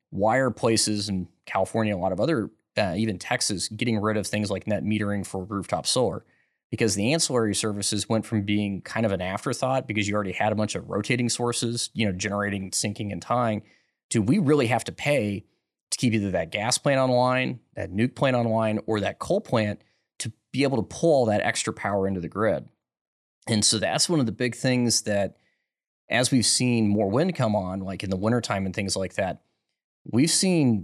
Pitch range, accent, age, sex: 100-120 Hz, American, 30-49, male